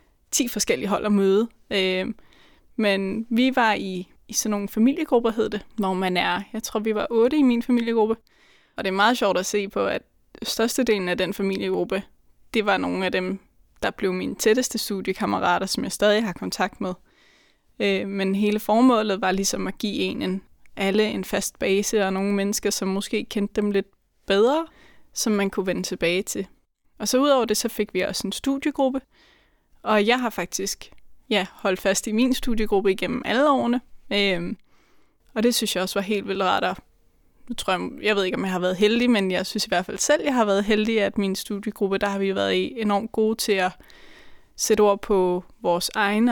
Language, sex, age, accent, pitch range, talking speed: Danish, female, 20-39, native, 195-225 Hz, 200 wpm